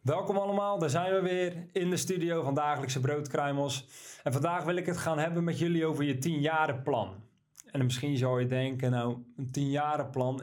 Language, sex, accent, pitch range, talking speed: Dutch, male, Dutch, 135-165 Hz, 195 wpm